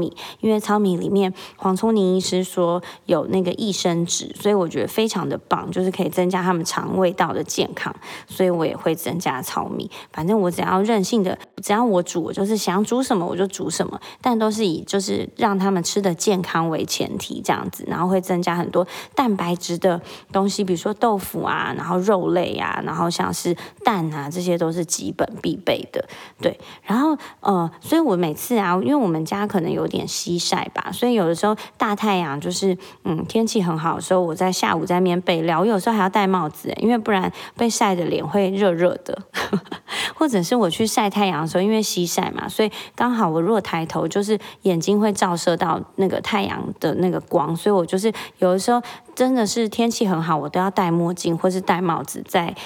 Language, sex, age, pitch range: Chinese, female, 20-39, 175-215 Hz